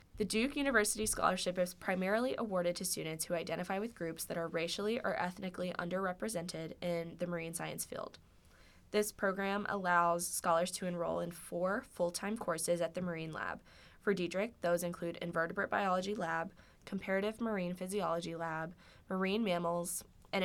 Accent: American